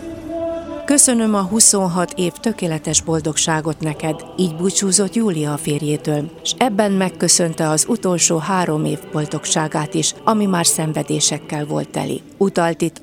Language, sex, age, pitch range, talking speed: Hungarian, female, 30-49, 155-195 Hz, 125 wpm